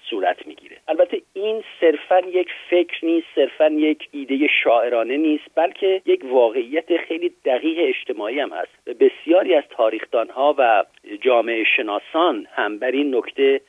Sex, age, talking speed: male, 50-69, 140 wpm